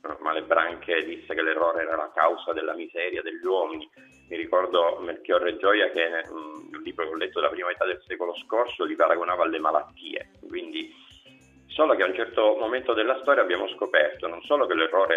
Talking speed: 185 wpm